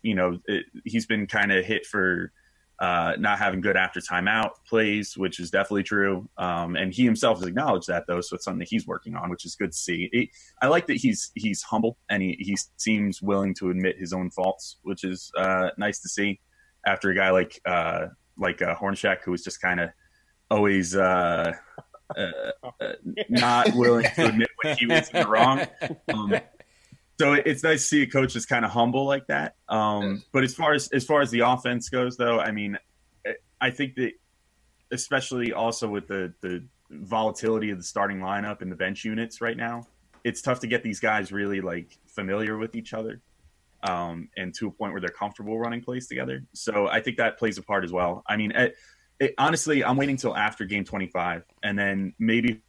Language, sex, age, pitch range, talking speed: English, male, 20-39, 95-120 Hz, 210 wpm